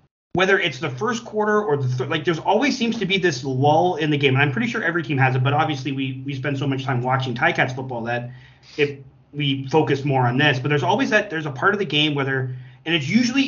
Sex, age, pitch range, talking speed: male, 30-49, 130-160 Hz, 265 wpm